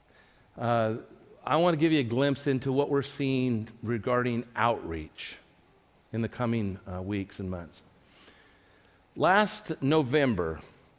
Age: 50-69